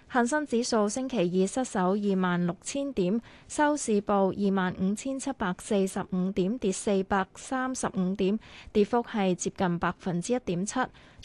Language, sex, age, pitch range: Chinese, female, 20-39, 190-245 Hz